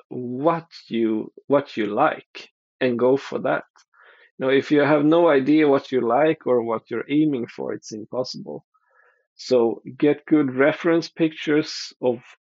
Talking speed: 150 wpm